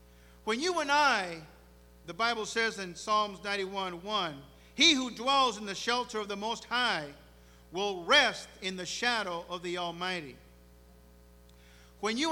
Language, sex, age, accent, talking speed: English, male, 50-69, American, 145 wpm